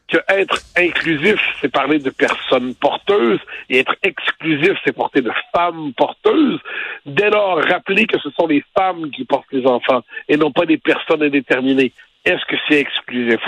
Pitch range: 145-215 Hz